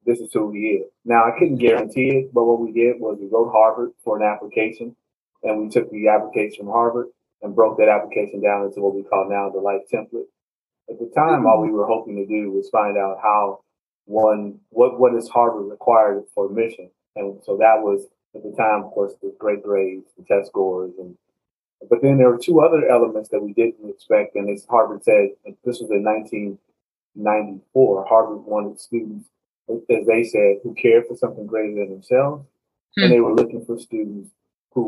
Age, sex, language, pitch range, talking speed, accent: 30-49, male, English, 105-125 Hz, 200 wpm, American